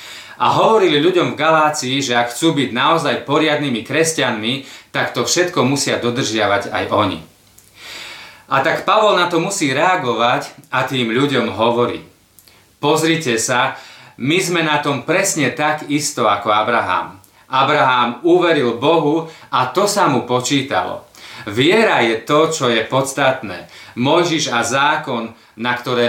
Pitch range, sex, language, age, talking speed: 120-150 Hz, male, Slovak, 30-49, 140 wpm